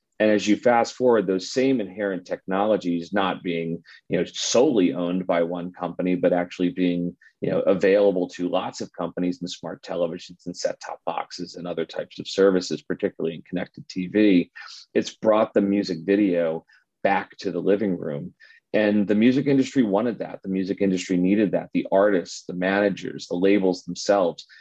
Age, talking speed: 30-49, 175 wpm